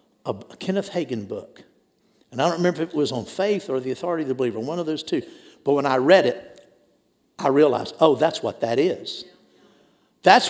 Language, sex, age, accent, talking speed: English, male, 50-69, American, 205 wpm